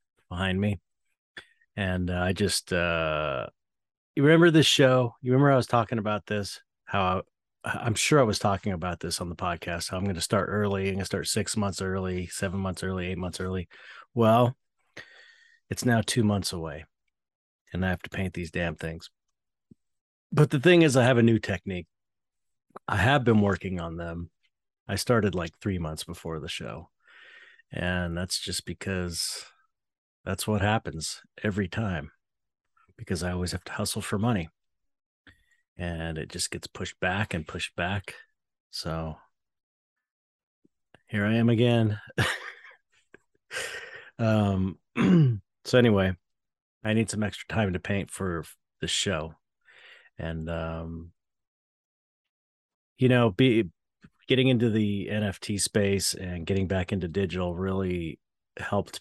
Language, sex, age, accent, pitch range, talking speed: English, male, 30-49, American, 90-110 Hz, 150 wpm